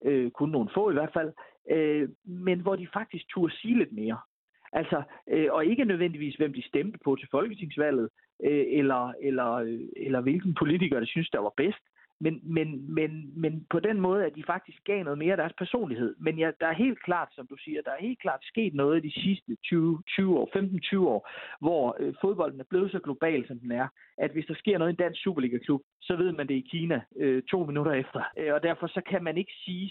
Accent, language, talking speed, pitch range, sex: native, Danish, 215 wpm, 145-185 Hz, male